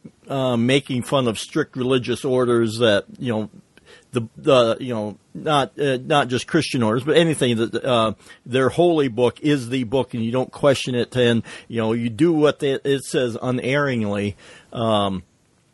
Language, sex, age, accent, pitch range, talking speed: English, male, 40-59, American, 115-140 Hz, 175 wpm